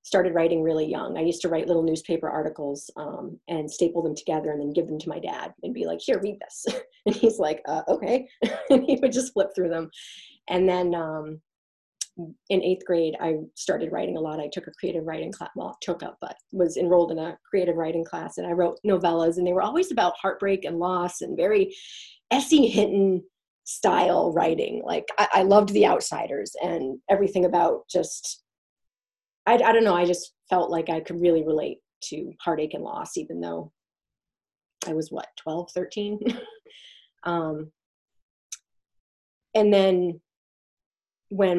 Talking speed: 180 wpm